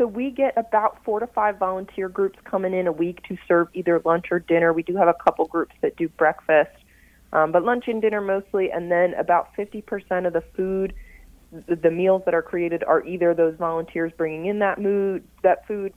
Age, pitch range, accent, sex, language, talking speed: 30-49, 160-190 Hz, American, female, English, 205 wpm